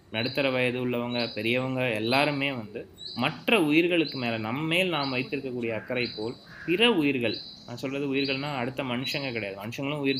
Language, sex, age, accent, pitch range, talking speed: Tamil, male, 20-39, native, 115-150 Hz, 140 wpm